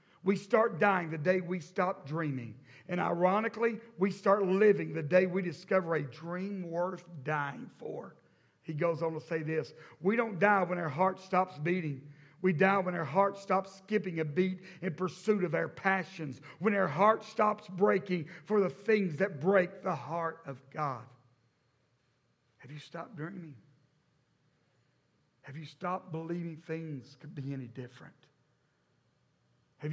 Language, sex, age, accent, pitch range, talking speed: English, male, 50-69, American, 150-195 Hz, 155 wpm